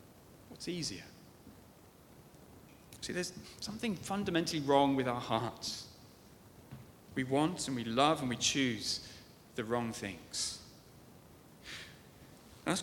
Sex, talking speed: male, 105 wpm